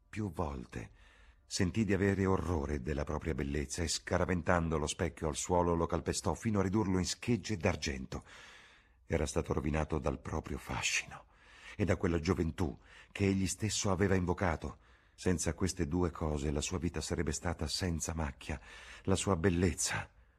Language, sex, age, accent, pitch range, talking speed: Italian, male, 50-69, native, 75-95 Hz, 155 wpm